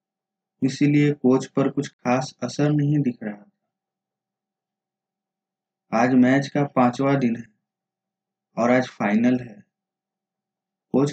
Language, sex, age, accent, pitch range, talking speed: Hindi, male, 20-39, native, 130-195 Hz, 115 wpm